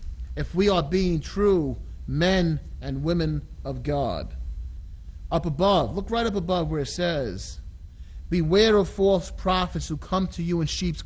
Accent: American